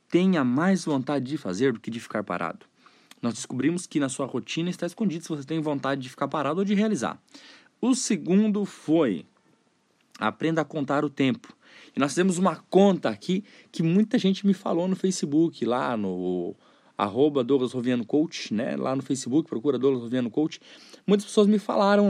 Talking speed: 180 wpm